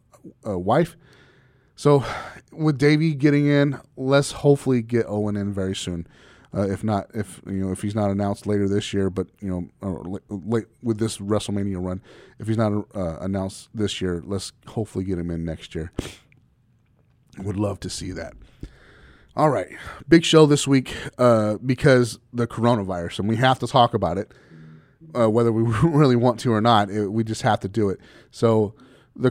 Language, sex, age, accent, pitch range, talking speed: English, male, 30-49, American, 105-135 Hz, 185 wpm